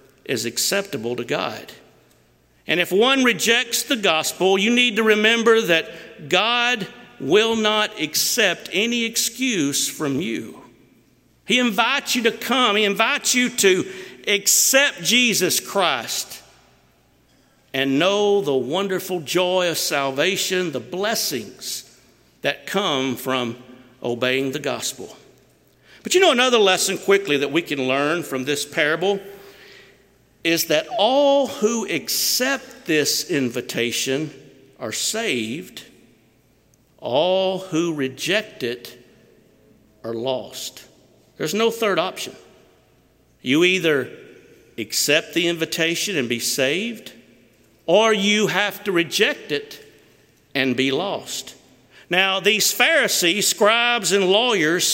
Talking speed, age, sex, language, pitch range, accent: 115 wpm, 50-69, male, English, 145-230 Hz, American